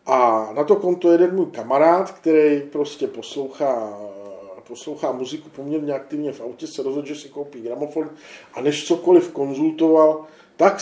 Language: Czech